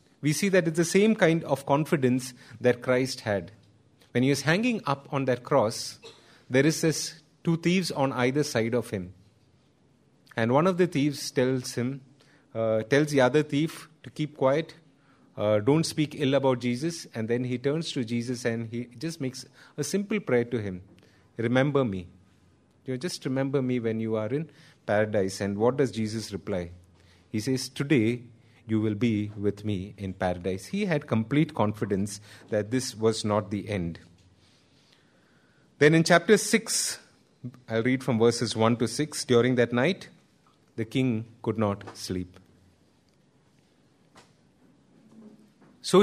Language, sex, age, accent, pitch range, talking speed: English, male, 30-49, Indian, 110-145 Hz, 160 wpm